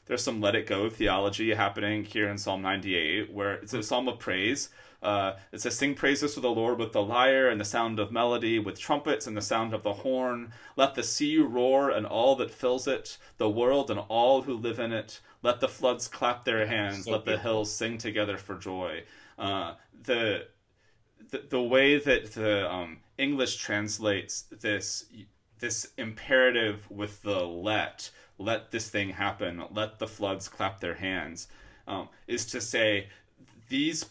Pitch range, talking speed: 105-120 Hz, 180 wpm